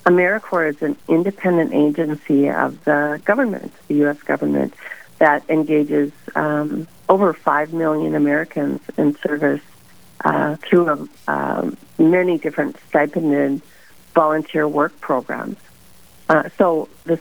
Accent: American